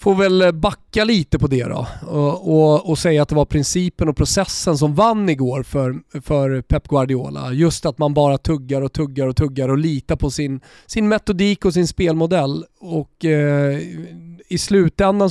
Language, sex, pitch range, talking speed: Swedish, male, 145-185 Hz, 180 wpm